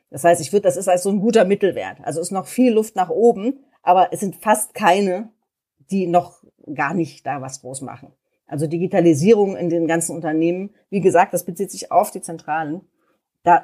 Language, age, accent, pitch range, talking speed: German, 40-59, German, 155-190 Hz, 205 wpm